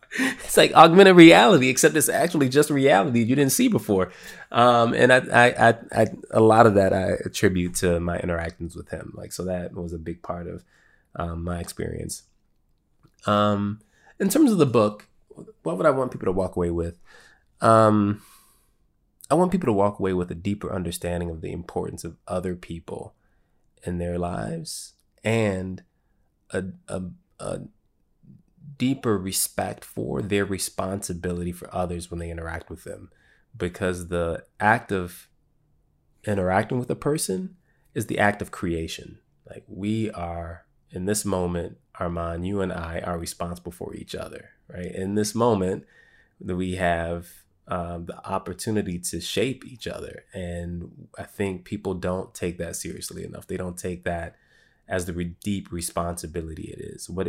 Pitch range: 85-105 Hz